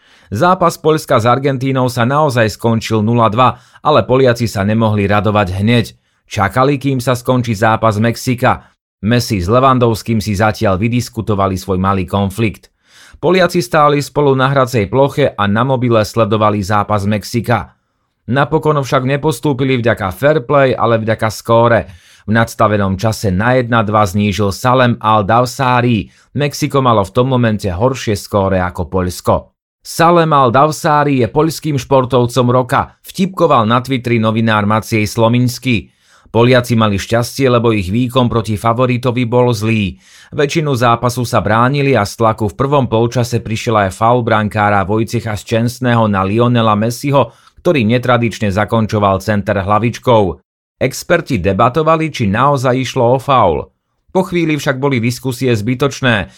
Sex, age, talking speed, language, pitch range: male, 30-49, 135 wpm, Slovak, 110-130 Hz